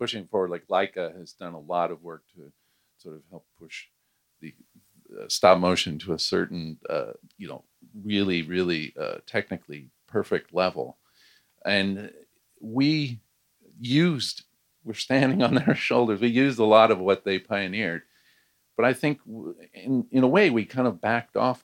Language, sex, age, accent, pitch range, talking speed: English, male, 50-69, American, 90-115 Hz, 165 wpm